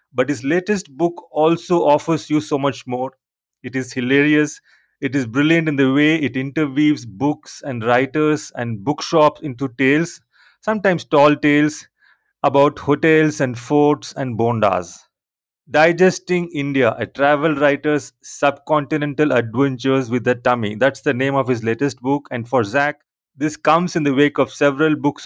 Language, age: English, 30-49